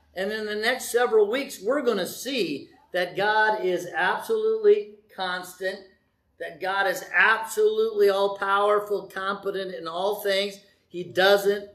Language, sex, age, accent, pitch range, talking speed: English, male, 50-69, American, 180-270 Hz, 135 wpm